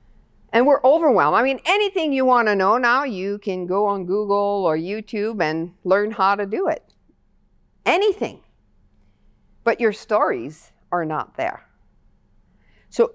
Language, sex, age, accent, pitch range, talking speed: English, female, 50-69, American, 185-270 Hz, 145 wpm